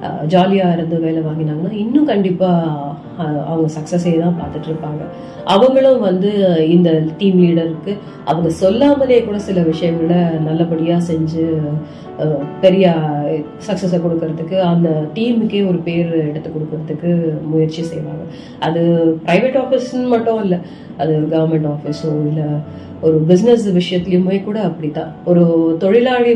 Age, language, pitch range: 30-49, Tamil, 165-195 Hz